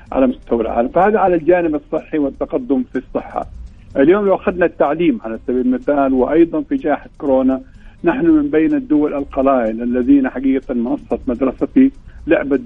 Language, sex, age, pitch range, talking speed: Arabic, male, 50-69, 130-180 Hz, 145 wpm